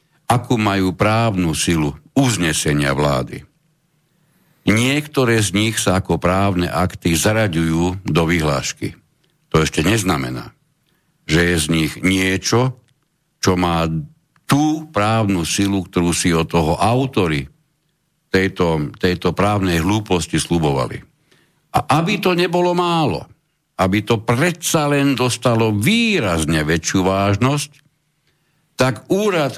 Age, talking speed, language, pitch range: 60-79, 110 wpm, Slovak, 85-145 Hz